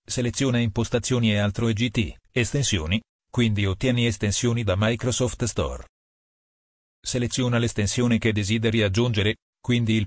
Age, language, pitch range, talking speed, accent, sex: 40-59, Italian, 105-125 Hz, 115 wpm, native, male